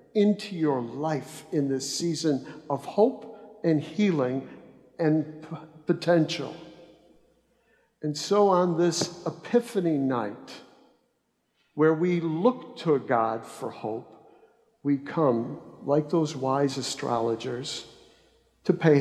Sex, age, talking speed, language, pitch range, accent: male, 60-79, 105 wpm, English, 130-165 Hz, American